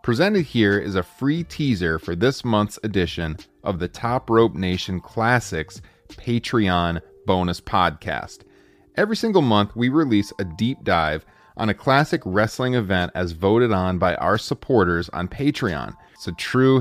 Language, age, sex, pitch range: English, 30-49, male, 95-130 Hz